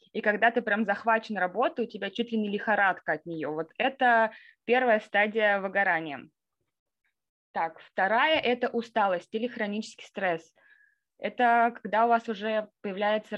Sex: female